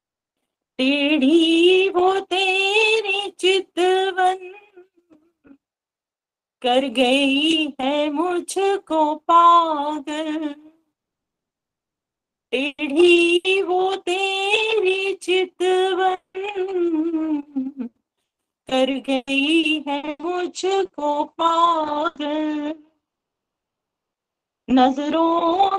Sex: female